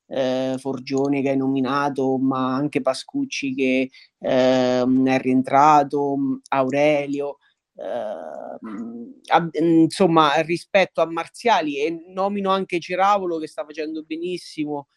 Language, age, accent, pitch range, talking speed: Italian, 30-49, native, 140-165 Hz, 105 wpm